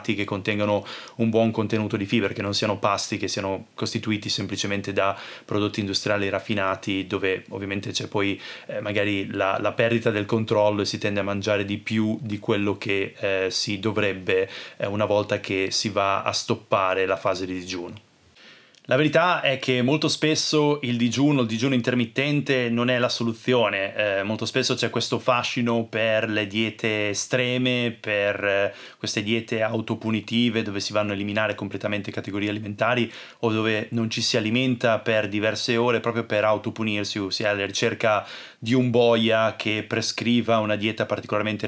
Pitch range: 105-115 Hz